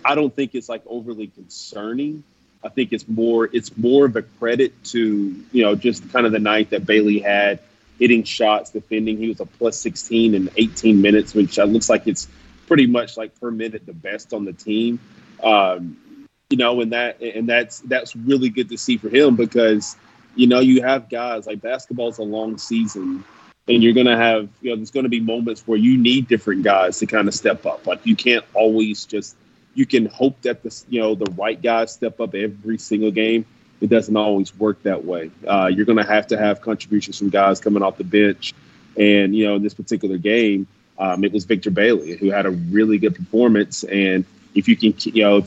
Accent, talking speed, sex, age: American, 215 wpm, male, 30-49